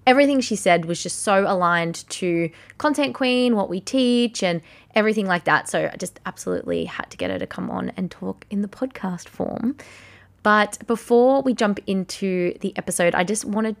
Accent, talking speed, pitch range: Australian, 190 wpm, 180-225 Hz